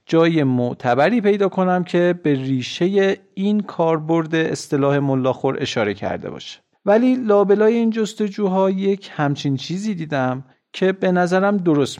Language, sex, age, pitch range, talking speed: Persian, male, 50-69, 130-190 Hz, 130 wpm